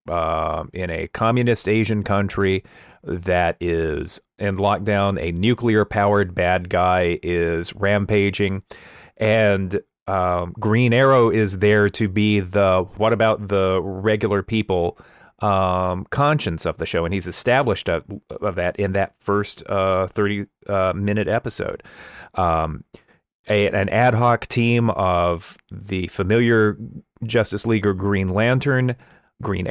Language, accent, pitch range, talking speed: English, American, 95-115 Hz, 125 wpm